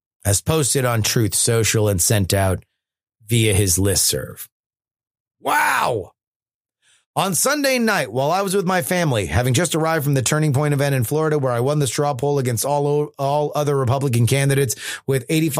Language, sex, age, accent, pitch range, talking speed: English, male, 30-49, American, 120-160 Hz, 170 wpm